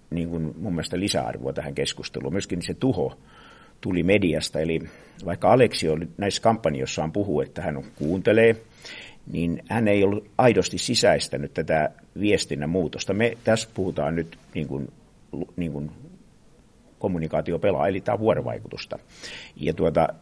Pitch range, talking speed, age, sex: 80-100 Hz, 135 wpm, 50-69, male